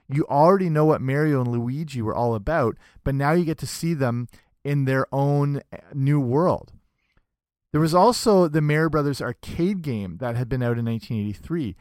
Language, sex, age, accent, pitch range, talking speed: English, male, 40-59, American, 120-155 Hz, 185 wpm